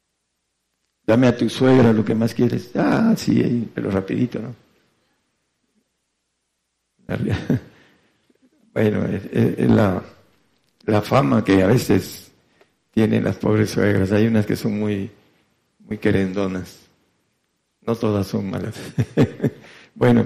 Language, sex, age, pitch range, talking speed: English, male, 60-79, 100-130 Hz, 110 wpm